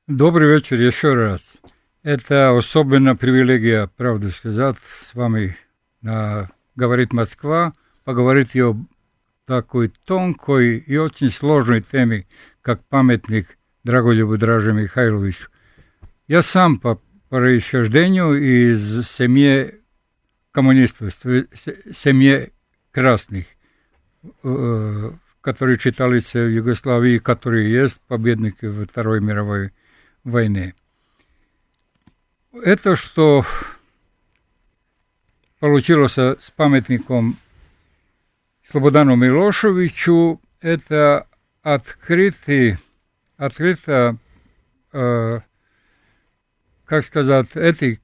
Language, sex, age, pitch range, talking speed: Russian, male, 60-79, 110-145 Hz, 75 wpm